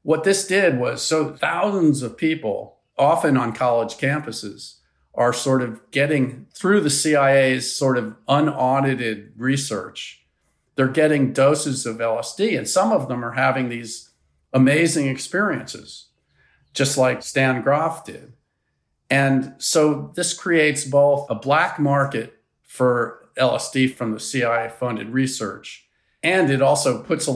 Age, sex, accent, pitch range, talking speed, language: 50-69, male, American, 120-145 Hz, 135 wpm, English